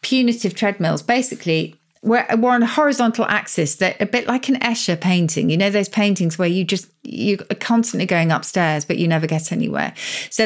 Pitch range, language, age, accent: 175-230 Hz, English, 40-59, British